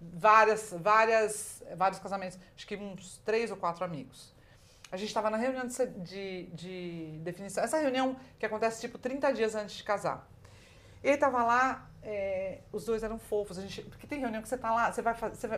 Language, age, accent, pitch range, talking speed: Portuguese, 40-59, Brazilian, 190-260 Hz, 195 wpm